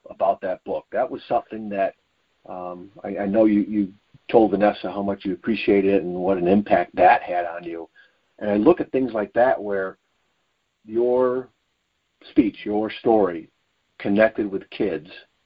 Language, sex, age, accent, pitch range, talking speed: English, male, 50-69, American, 95-120 Hz, 165 wpm